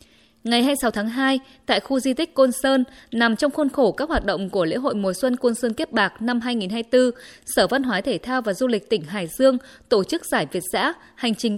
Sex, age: female, 20-39